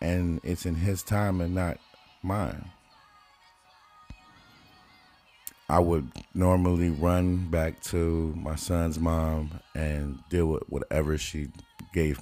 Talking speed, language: 115 wpm, English